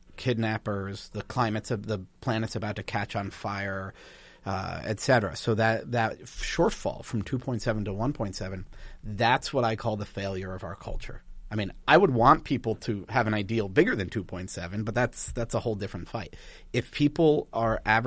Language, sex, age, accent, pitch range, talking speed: English, male, 40-59, American, 100-125 Hz, 180 wpm